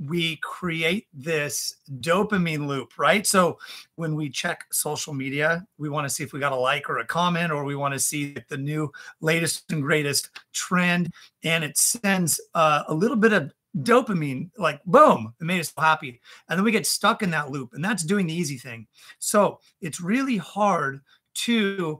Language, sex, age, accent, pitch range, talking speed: English, male, 40-59, American, 150-190 Hz, 185 wpm